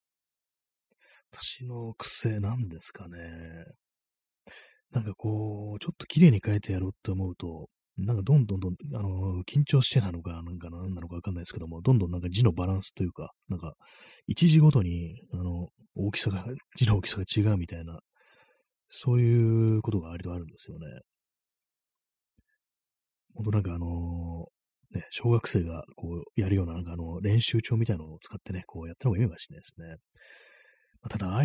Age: 30-49